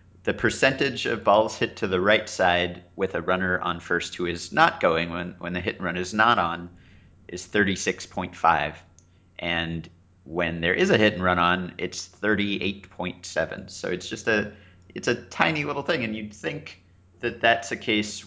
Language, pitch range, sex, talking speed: English, 90-100 Hz, male, 185 wpm